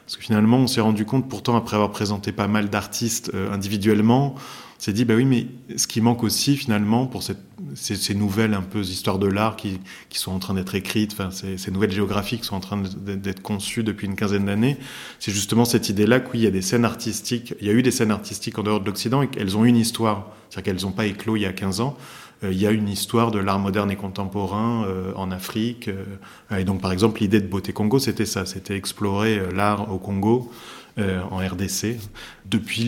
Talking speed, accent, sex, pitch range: 230 wpm, French, male, 100-115 Hz